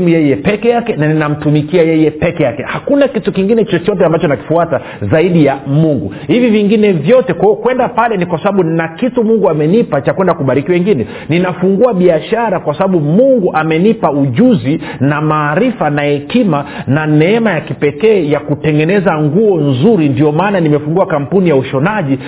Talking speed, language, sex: 160 wpm, Swahili, male